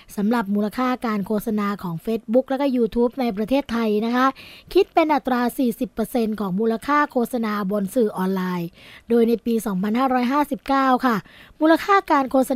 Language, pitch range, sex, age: Thai, 205-250 Hz, female, 20-39